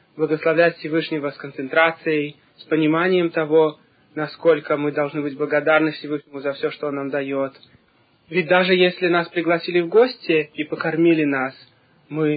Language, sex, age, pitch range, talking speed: Russian, male, 20-39, 140-160 Hz, 145 wpm